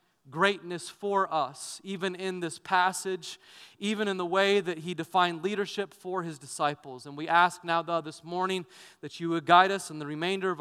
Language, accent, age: English, American, 30-49